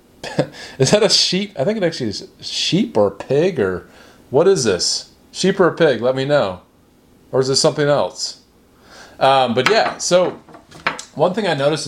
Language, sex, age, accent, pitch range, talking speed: English, male, 30-49, American, 120-145 Hz, 180 wpm